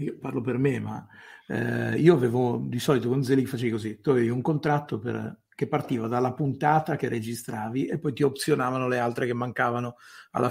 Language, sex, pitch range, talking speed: Italian, male, 115-130 Hz, 195 wpm